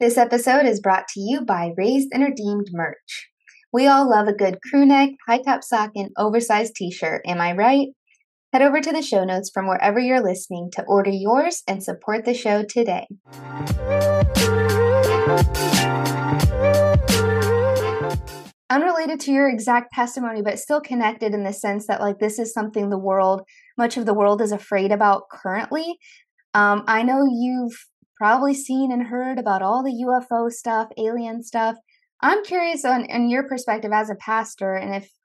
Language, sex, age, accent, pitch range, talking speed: English, female, 20-39, American, 195-245 Hz, 165 wpm